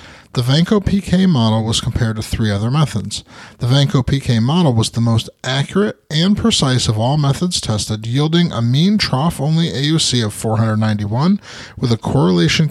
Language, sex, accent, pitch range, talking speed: English, male, American, 115-155 Hz, 150 wpm